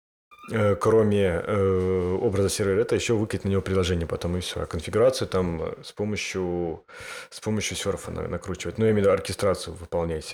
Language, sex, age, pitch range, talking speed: Russian, male, 30-49, 95-120 Hz, 140 wpm